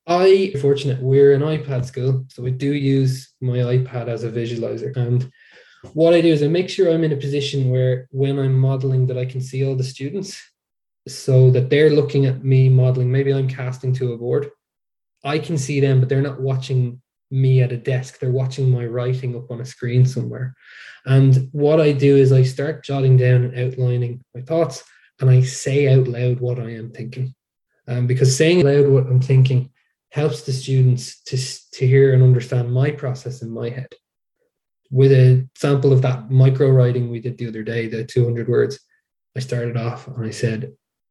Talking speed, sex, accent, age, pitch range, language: 200 wpm, male, Irish, 20-39, 125-135 Hz, English